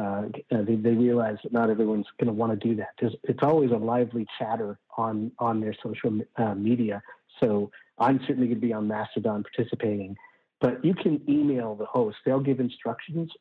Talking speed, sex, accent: 190 wpm, male, American